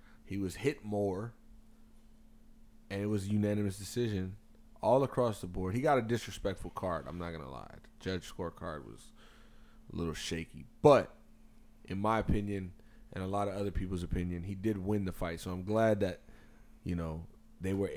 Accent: American